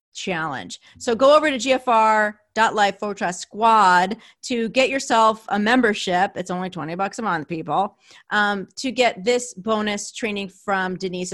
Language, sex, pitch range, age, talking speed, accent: English, female, 195-250 Hz, 30-49, 145 wpm, American